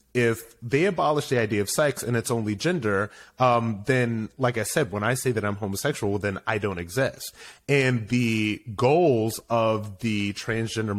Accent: American